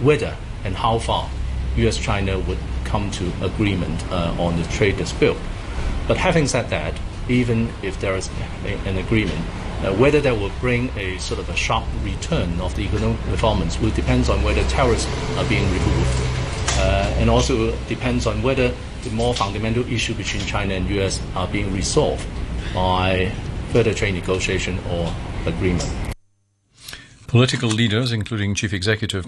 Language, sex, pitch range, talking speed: English, male, 90-115 Hz, 160 wpm